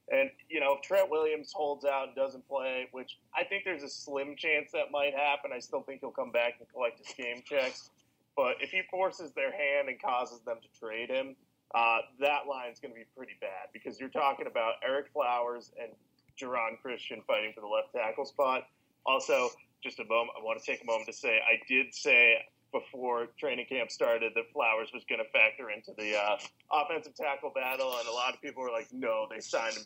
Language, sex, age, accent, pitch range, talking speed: English, male, 30-49, American, 125-195 Hz, 220 wpm